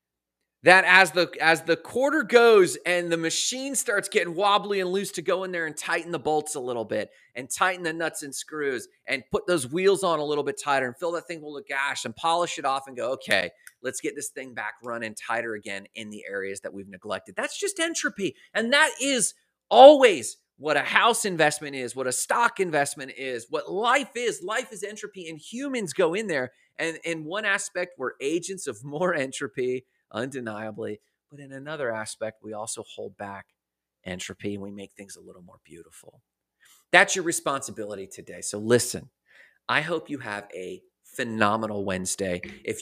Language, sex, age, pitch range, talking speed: English, male, 30-49, 120-185 Hz, 195 wpm